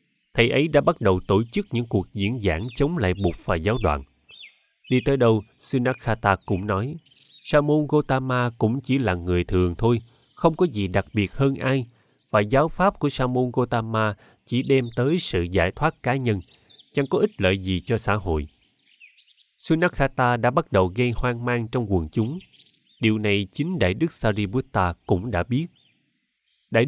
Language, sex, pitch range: Vietnamese, male, 100-135 Hz